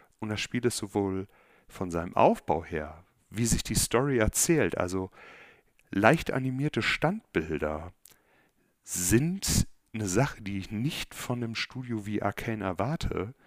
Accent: German